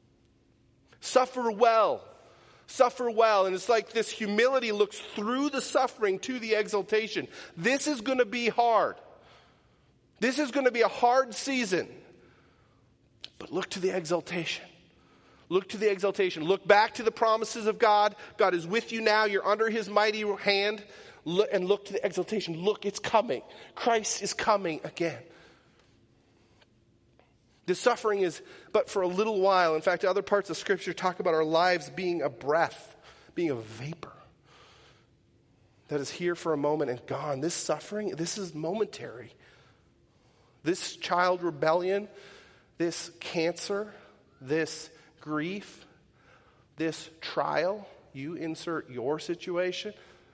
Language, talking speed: English, 140 wpm